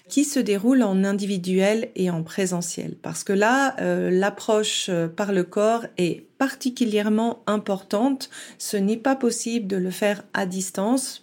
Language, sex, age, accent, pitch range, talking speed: French, female, 40-59, French, 185-230 Hz, 150 wpm